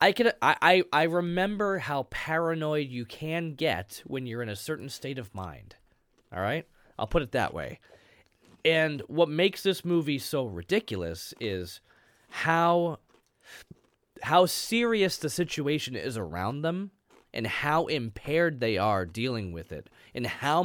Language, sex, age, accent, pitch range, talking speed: English, male, 30-49, American, 105-160 Hz, 150 wpm